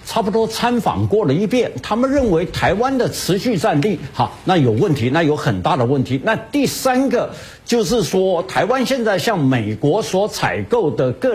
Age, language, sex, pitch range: 60-79, Chinese, male, 145-235 Hz